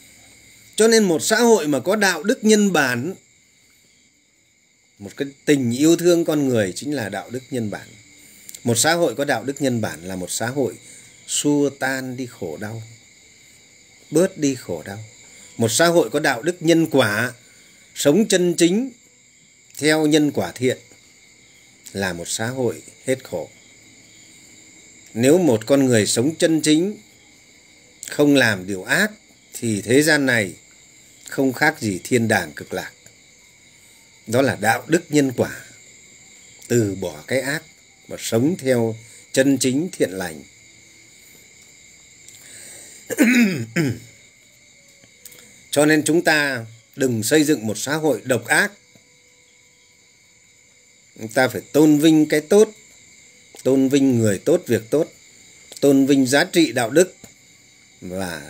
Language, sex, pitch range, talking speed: Vietnamese, male, 110-155 Hz, 140 wpm